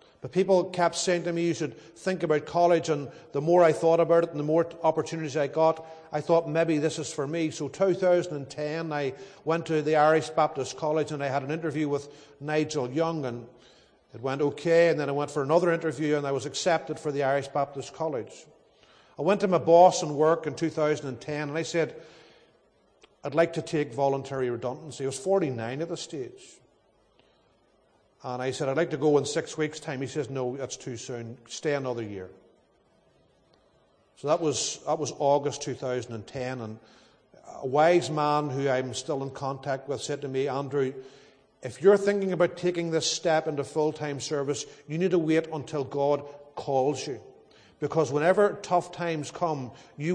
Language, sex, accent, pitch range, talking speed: English, male, Irish, 135-165 Hz, 190 wpm